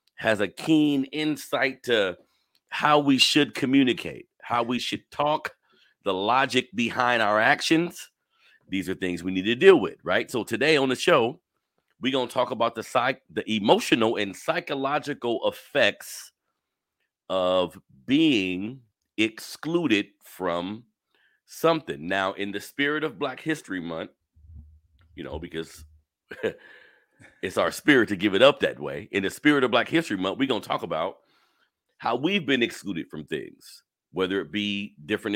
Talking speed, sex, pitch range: 155 wpm, male, 105-170 Hz